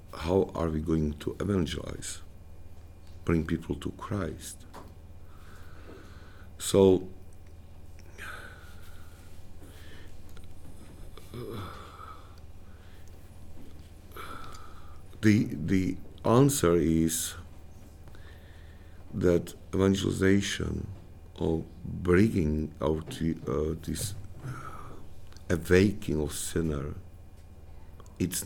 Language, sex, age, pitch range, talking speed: English, male, 60-79, 80-95 Hz, 60 wpm